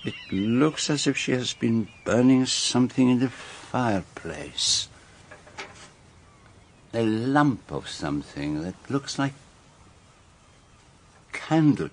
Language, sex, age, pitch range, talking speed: English, male, 60-79, 95-125 Hz, 100 wpm